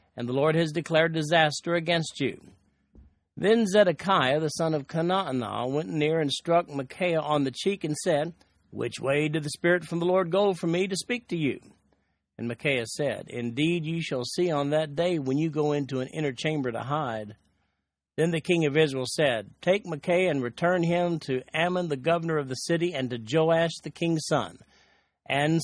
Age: 50-69